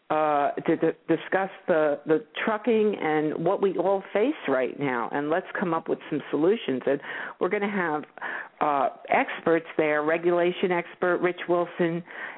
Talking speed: 165 wpm